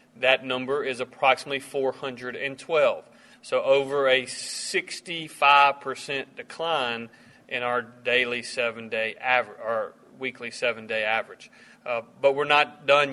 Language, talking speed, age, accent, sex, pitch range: English, 110 wpm, 40-59, American, male, 130-150 Hz